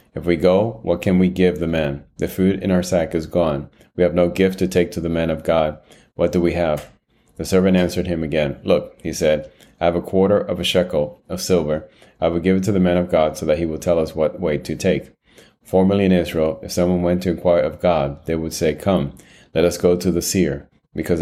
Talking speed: 250 wpm